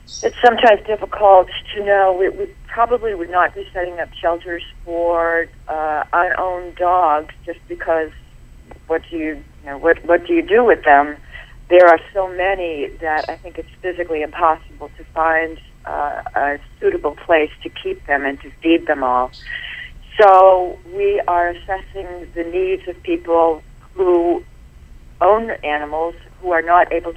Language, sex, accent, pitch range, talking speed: English, female, American, 155-180 Hz, 155 wpm